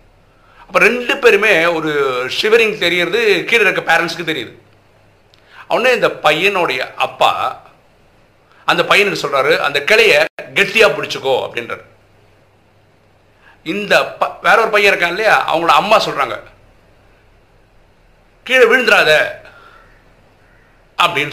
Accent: native